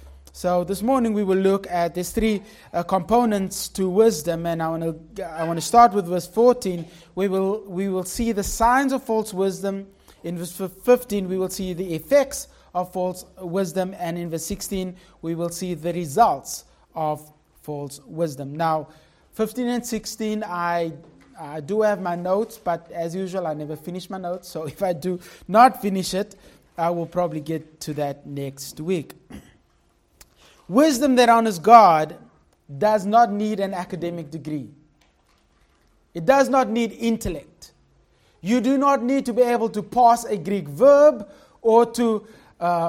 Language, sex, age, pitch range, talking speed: English, male, 30-49, 170-230 Hz, 165 wpm